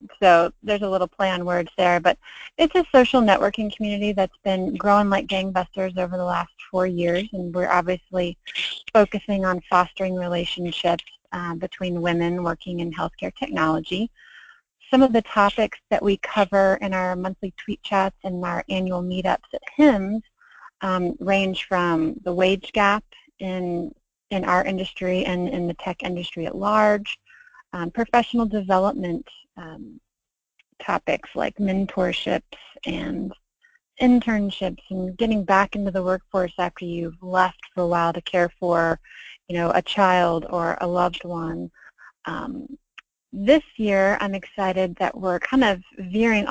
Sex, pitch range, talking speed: female, 180-210 Hz, 145 wpm